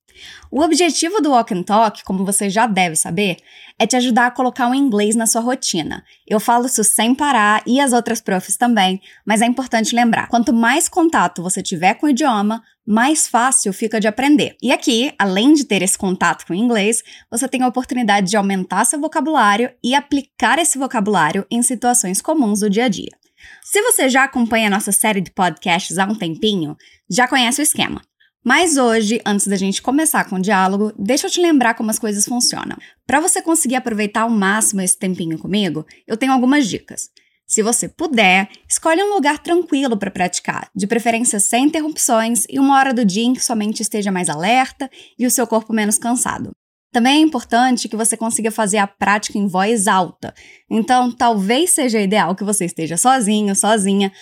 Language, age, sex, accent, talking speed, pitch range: Portuguese, 10-29, female, Brazilian, 195 wpm, 205-265 Hz